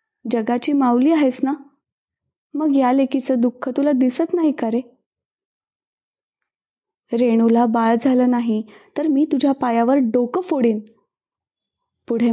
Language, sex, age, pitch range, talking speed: Marathi, female, 20-39, 230-295 Hz, 115 wpm